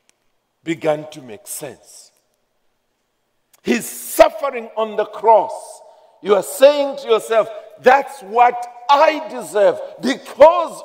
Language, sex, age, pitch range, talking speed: English, male, 50-69, 180-265 Hz, 105 wpm